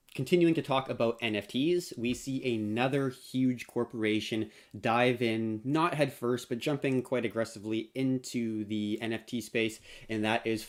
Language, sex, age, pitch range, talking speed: English, male, 20-39, 105-125 Hz, 135 wpm